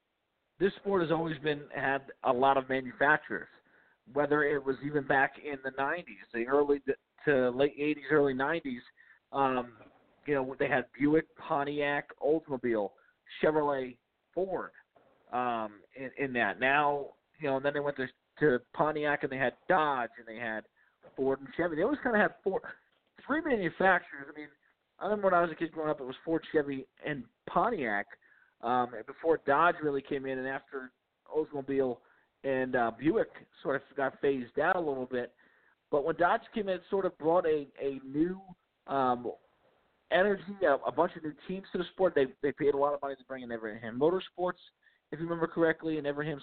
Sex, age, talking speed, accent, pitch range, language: male, 40-59, 185 wpm, American, 135-170 Hz, English